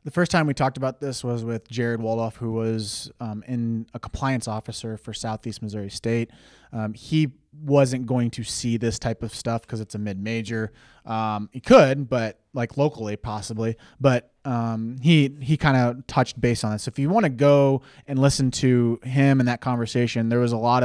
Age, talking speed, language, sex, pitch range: 20-39, 205 wpm, English, male, 115-135 Hz